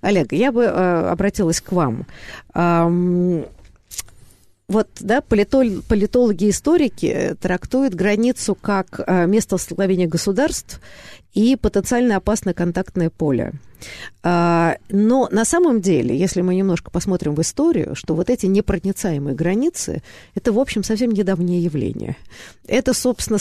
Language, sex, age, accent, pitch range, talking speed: Russian, female, 50-69, native, 165-220 Hz, 115 wpm